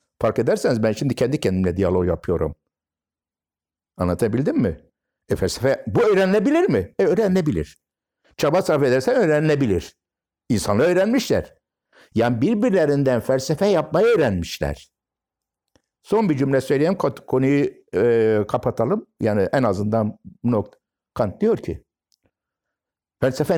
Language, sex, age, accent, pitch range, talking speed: Turkish, male, 60-79, native, 95-140 Hz, 110 wpm